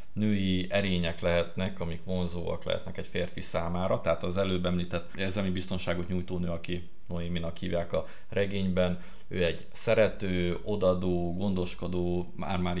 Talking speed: 135 wpm